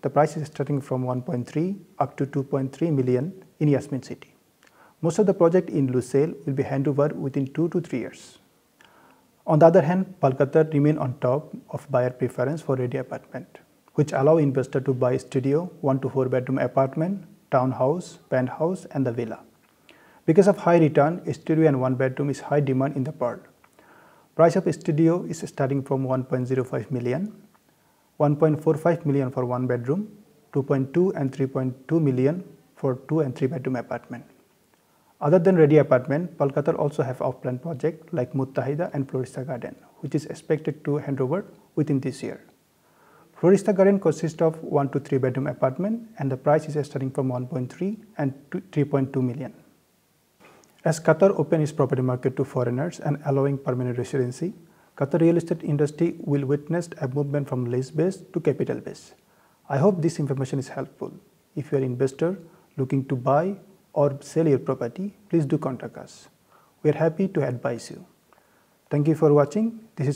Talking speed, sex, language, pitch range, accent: 170 wpm, male, English, 135-165 Hz, Indian